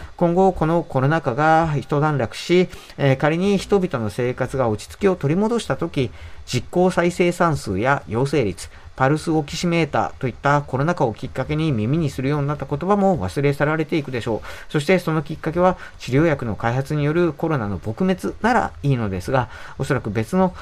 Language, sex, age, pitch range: Japanese, male, 40-59, 115-170 Hz